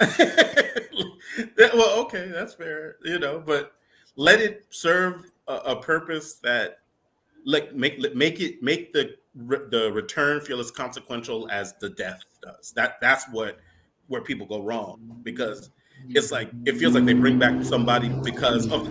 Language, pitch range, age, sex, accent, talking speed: English, 120-170 Hz, 30-49, male, American, 155 wpm